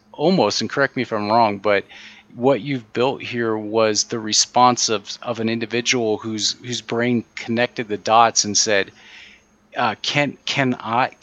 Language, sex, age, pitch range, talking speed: English, male, 30-49, 110-140 Hz, 165 wpm